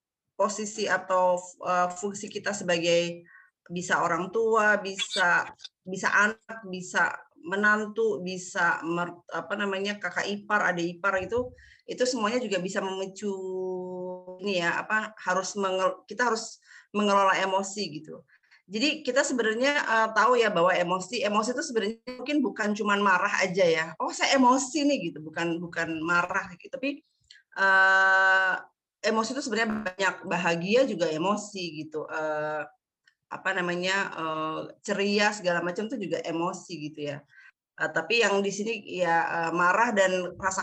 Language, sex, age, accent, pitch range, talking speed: Indonesian, female, 30-49, native, 175-215 Hz, 140 wpm